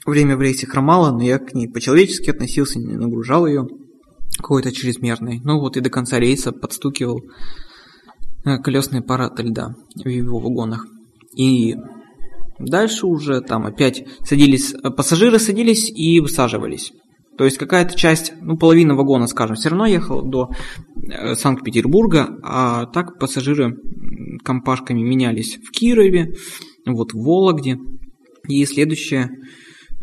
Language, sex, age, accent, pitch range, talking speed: Russian, male, 20-39, native, 125-155 Hz, 130 wpm